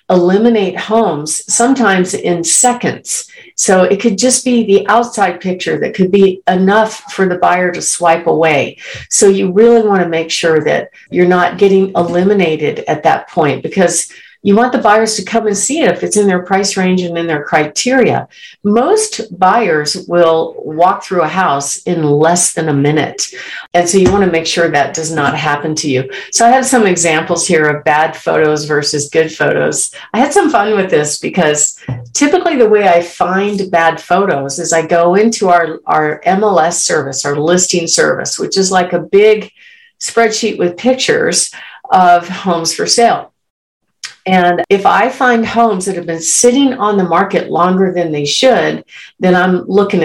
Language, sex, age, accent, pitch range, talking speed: English, female, 50-69, American, 160-210 Hz, 180 wpm